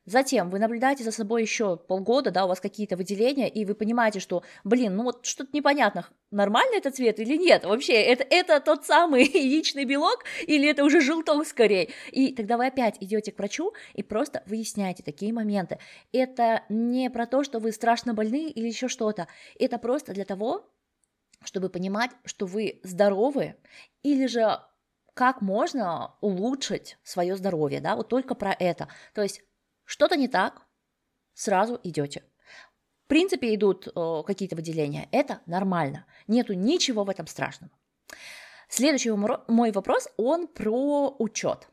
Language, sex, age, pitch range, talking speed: Russian, female, 20-39, 195-255 Hz, 155 wpm